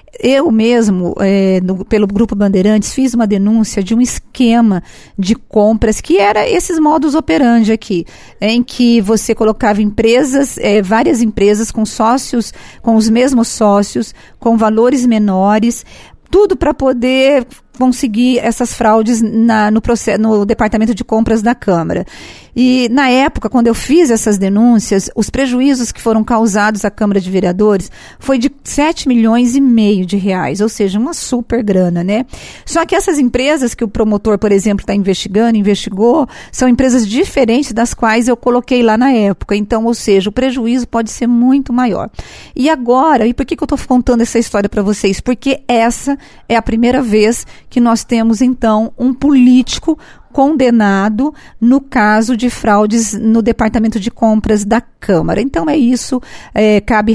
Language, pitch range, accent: Portuguese, 215-255 Hz, Brazilian